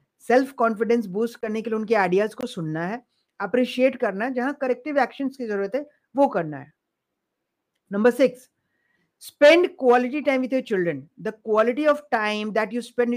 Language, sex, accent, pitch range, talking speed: Hindi, female, native, 210-265 Hz, 130 wpm